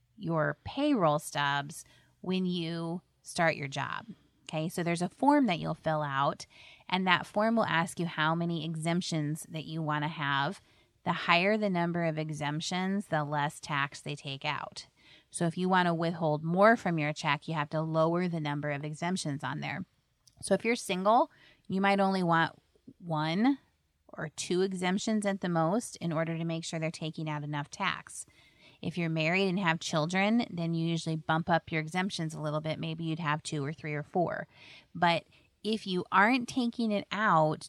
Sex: female